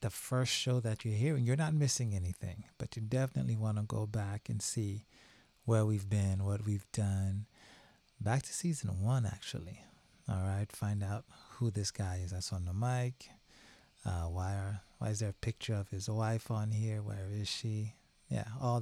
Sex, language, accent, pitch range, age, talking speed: male, English, American, 100-120 Hz, 30-49, 190 wpm